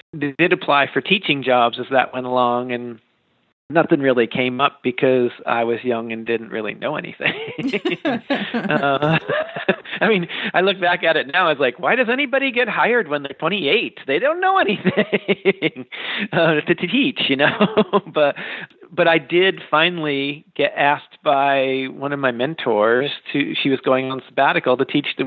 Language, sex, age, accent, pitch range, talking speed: English, male, 40-59, American, 130-165 Hz, 175 wpm